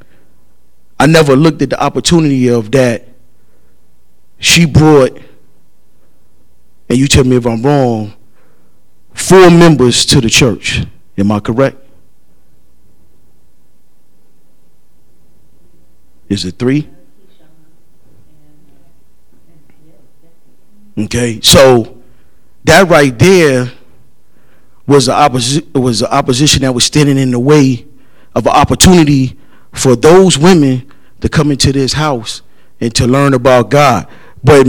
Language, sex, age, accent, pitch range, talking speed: English, male, 40-59, American, 110-155 Hz, 105 wpm